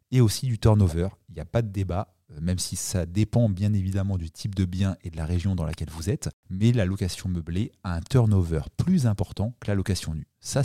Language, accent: French, French